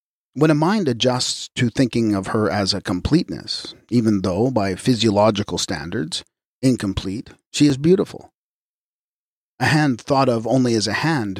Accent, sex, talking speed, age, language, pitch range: American, male, 145 wpm, 40-59, English, 105-140 Hz